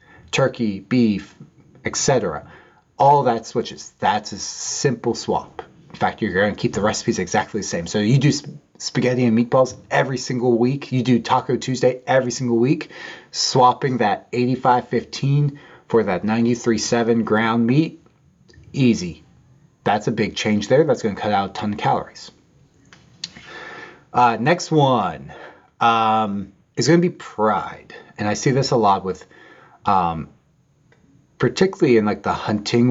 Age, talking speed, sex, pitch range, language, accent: 30-49, 150 wpm, male, 105-130 Hz, English, American